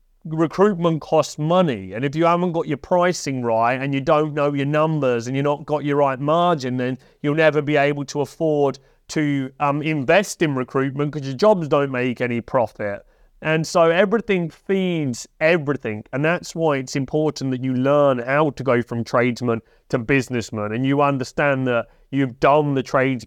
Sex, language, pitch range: male, English, 130-155 Hz